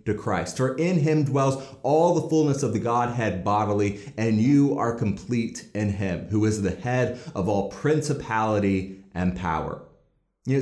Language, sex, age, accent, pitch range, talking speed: English, male, 30-49, American, 115-145 Hz, 160 wpm